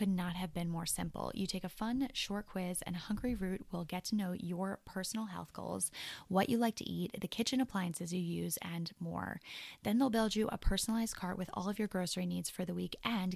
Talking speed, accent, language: 235 wpm, American, English